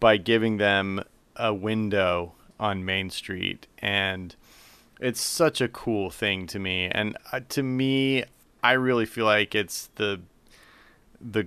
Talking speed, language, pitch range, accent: 135 wpm, English, 100-115 Hz, American